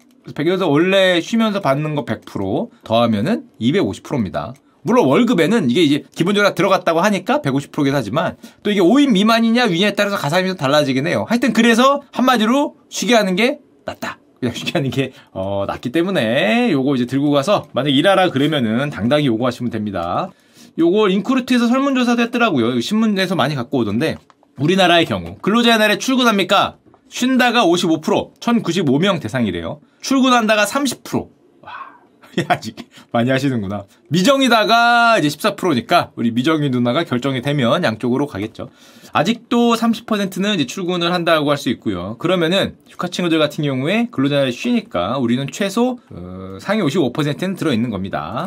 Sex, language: male, Korean